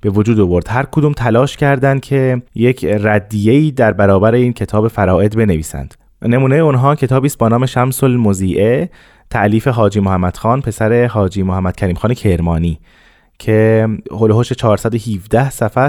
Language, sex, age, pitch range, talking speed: Persian, male, 20-39, 100-130 Hz, 140 wpm